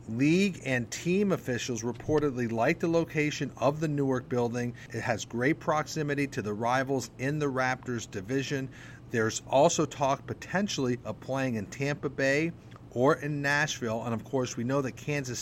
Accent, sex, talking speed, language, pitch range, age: American, male, 165 wpm, English, 115-145 Hz, 40-59